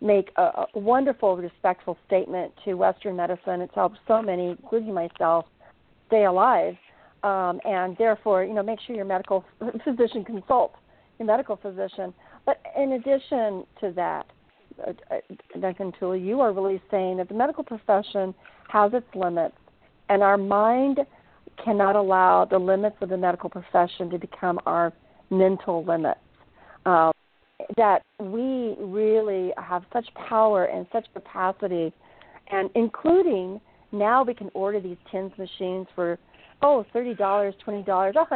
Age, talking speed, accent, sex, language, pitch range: 50-69, 135 wpm, American, female, English, 185-225 Hz